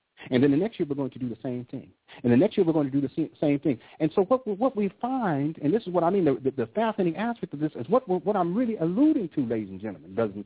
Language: English